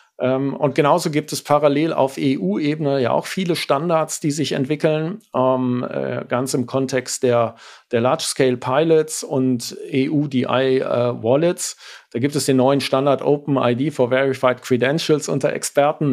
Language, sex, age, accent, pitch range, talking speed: German, male, 50-69, German, 130-155 Hz, 130 wpm